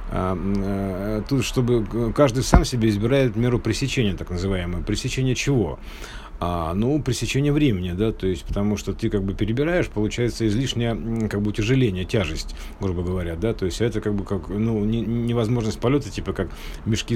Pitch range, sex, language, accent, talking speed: 105-125 Hz, male, Russian, native, 160 wpm